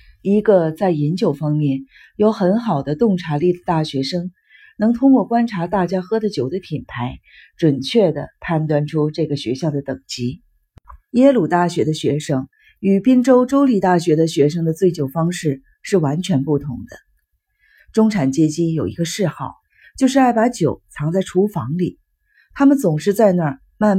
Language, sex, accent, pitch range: Chinese, female, native, 150-205 Hz